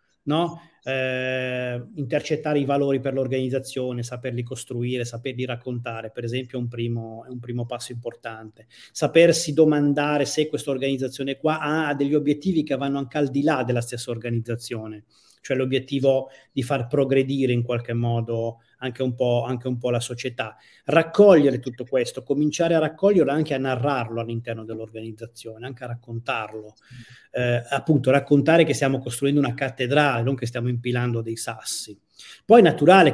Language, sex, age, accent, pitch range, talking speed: Italian, male, 30-49, native, 120-140 Hz, 160 wpm